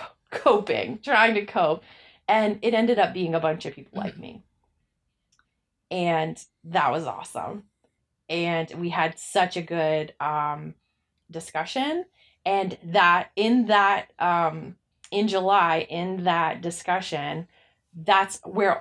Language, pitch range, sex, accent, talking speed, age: English, 165-205 Hz, female, American, 125 wpm, 20-39